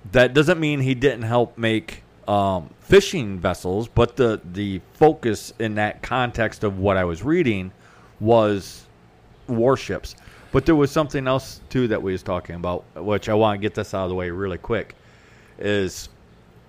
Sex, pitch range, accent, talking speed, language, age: male, 100-125 Hz, American, 175 wpm, English, 40-59